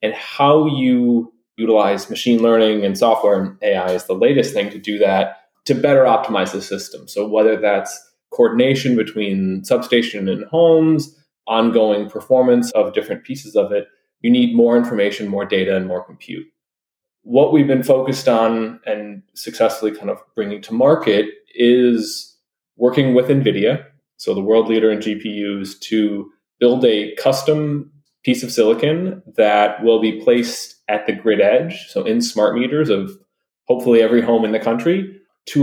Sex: male